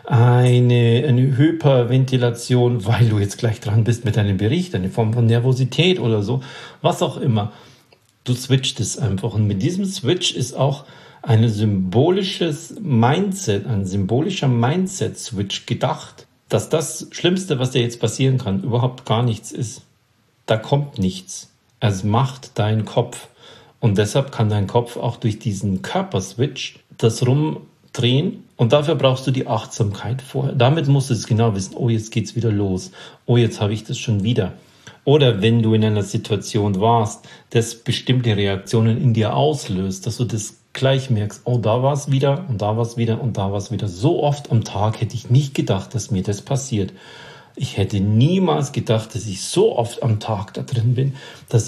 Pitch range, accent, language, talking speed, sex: 110-130 Hz, German, German, 180 wpm, male